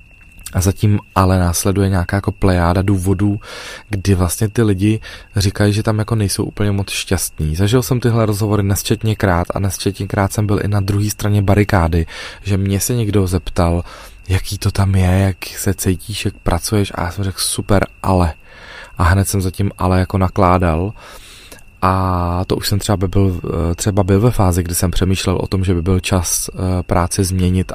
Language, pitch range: Czech, 90-100 Hz